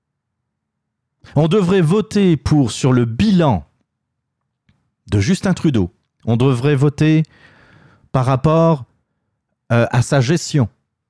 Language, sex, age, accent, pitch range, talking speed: French, male, 30-49, French, 110-155 Hz, 105 wpm